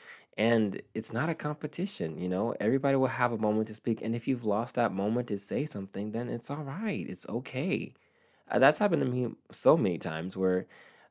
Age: 20-39